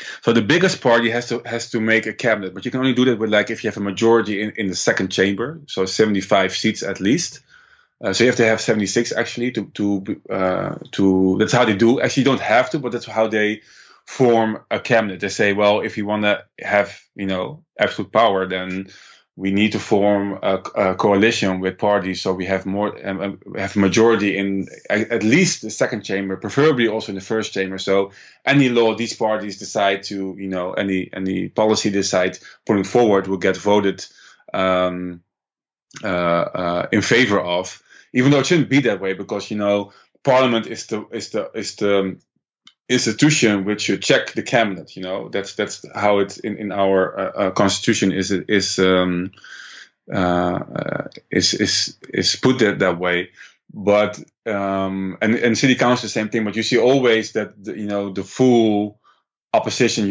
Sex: male